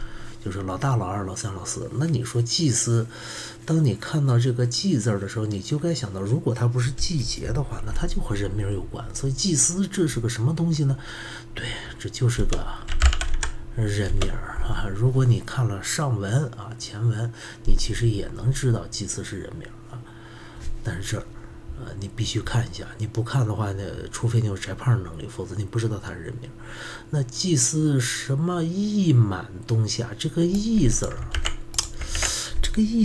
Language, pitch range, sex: Chinese, 105-135 Hz, male